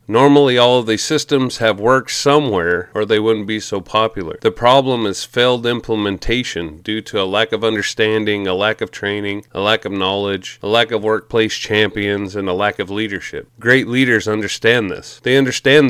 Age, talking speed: 30-49, 185 wpm